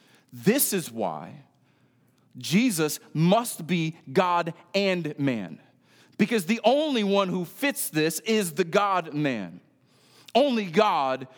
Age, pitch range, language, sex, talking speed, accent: 40-59, 135-200 Hz, English, male, 110 wpm, American